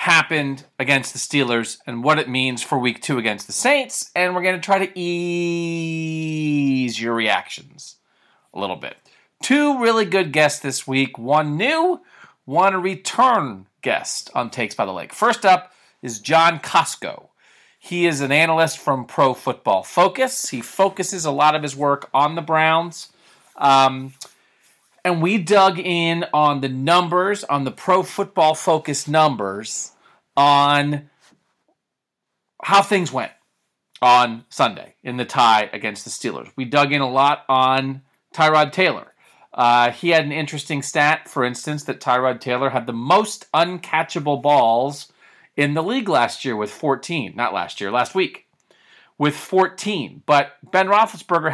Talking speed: 155 wpm